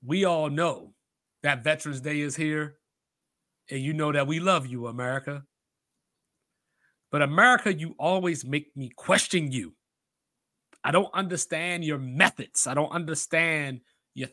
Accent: American